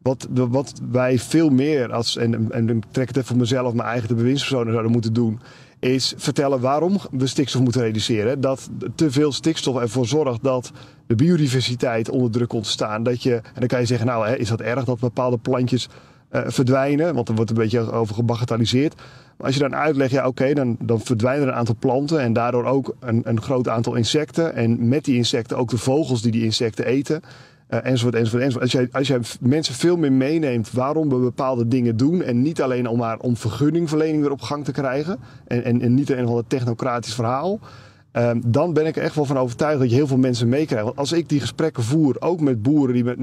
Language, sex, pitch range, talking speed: Dutch, male, 120-140 Hz, 225 wpm